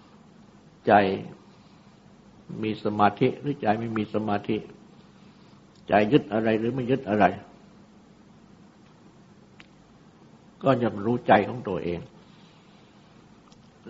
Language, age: Thai, 60-79